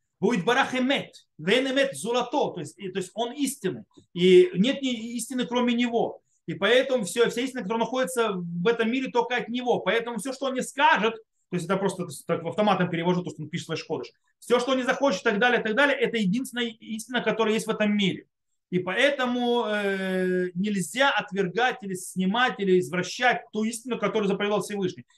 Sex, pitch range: male, 180-245 Hz